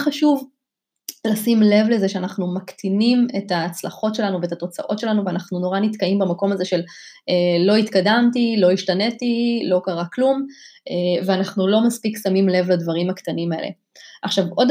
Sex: female